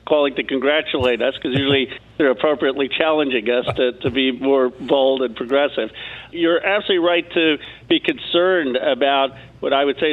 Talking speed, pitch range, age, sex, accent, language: 165 wpm, 130-145 Hz, 50-69, male, American, English